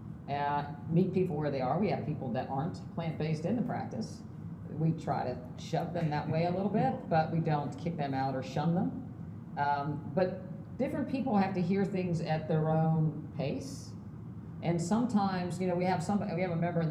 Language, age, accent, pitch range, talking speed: English, 50-69, American, 145-180 Hz, 205 wpm